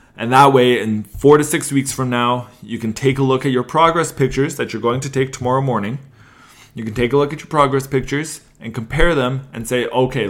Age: 20-39